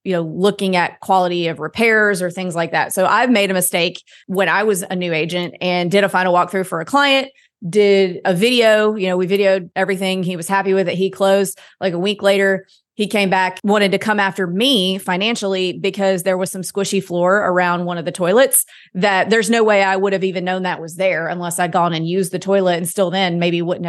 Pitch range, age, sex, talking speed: 180-205 Hz, 30-49, female, 235 wpm